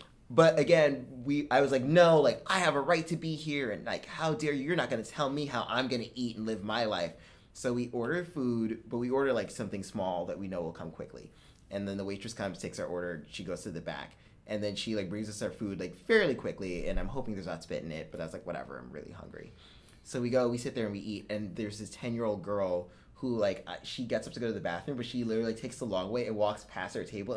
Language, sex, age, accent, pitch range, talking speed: English, male, 20-39, American, 105-135 Hz, 275 wpm